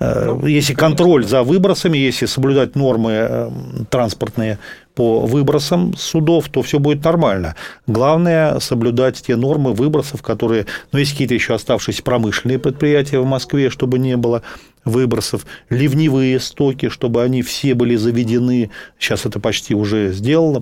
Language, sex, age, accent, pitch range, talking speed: Russian, male, 40-59, native, 110-135 Hz, 135 wpm